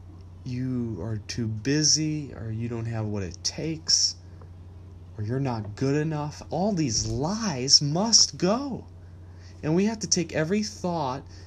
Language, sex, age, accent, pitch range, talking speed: English, male, 30-49, American, 95-160 Hz, 145 wpm